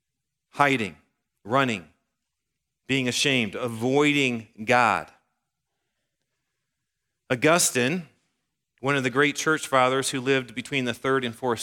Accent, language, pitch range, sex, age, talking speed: American, English, 125-155 Hz, male, 40-59, 105 wpm